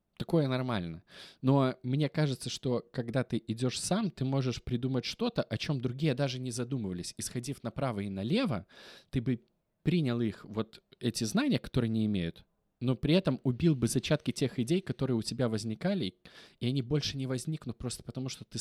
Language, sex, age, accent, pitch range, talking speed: Russian, male, 20-39, native, 105-135 Hz, 175 wpm